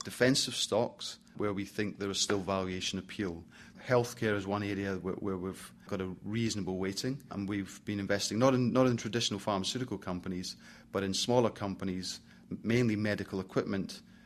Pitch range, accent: 95-105 Hz, British